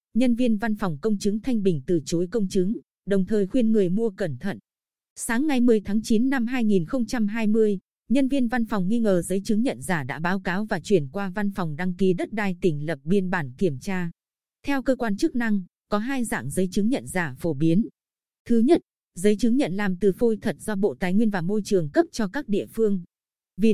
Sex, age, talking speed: female, 20-39, 225 wpm